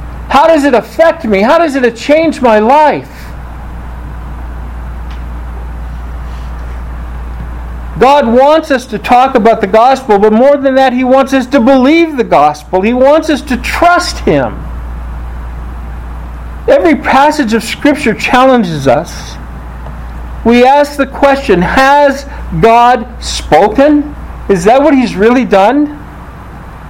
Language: English